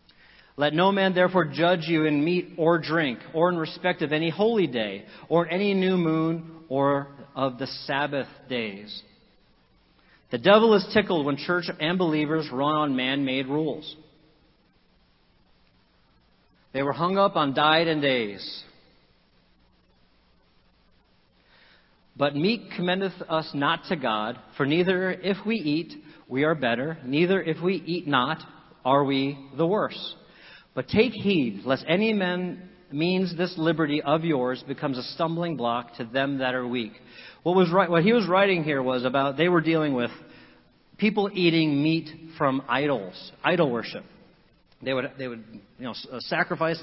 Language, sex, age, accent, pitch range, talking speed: English, male, 40-59, American, 140-175 Hz, 150 wpm